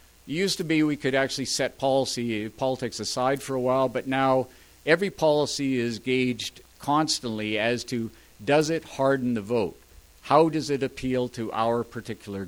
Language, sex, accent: English, male, American